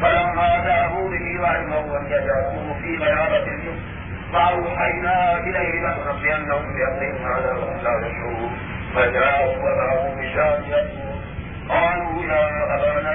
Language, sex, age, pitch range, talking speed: Urdu, male, 50-69, 135-180 Hz, 100 wpm